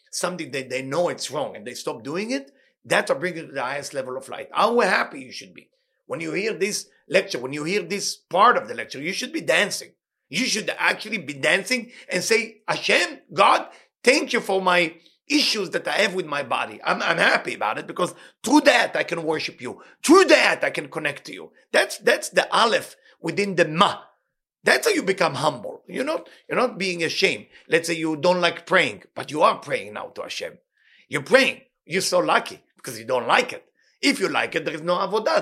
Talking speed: 220 wpm